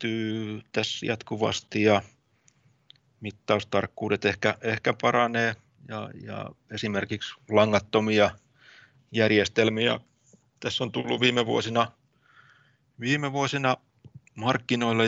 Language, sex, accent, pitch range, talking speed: Finnish, male, native, 110-135 Hz, 80 wpm